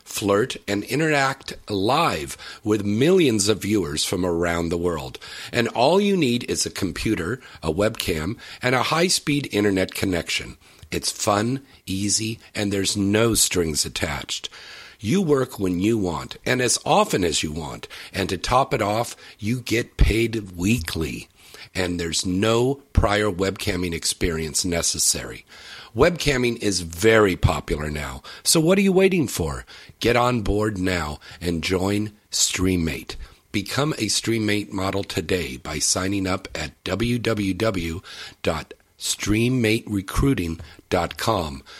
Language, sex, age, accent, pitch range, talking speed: English, male, 50-69, American, 85-115 Hz, 130 wpm